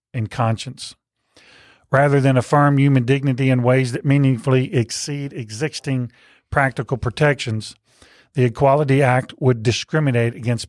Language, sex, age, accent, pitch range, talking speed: English, male, 40-59, American, 120-140 Hz, 120 wpm